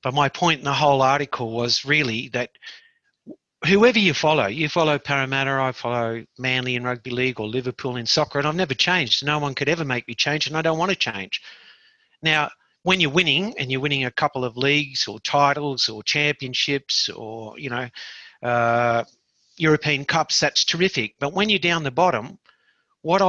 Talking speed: 190 wpm